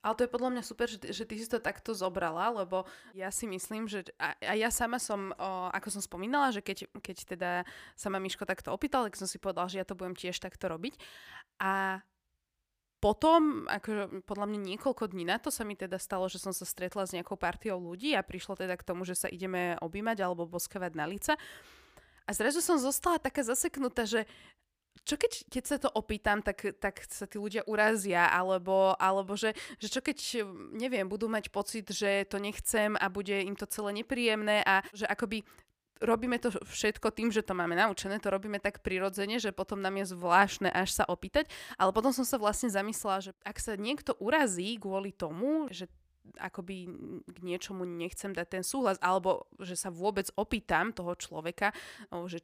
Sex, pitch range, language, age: female, 185-225 Hz, Slovak, 20-39